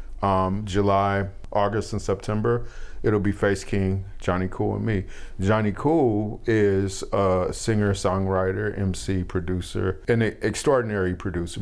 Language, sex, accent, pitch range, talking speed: English, male, American, 90-100 Hz, 120 wpm